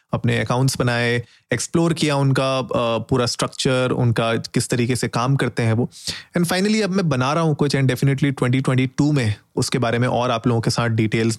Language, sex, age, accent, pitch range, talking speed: Hindi, male, 30-49, native, 120-145 Hz, 195 wpm